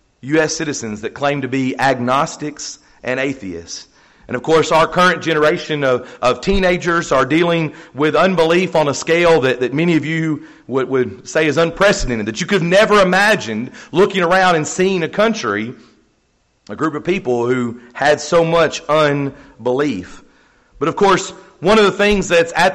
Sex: male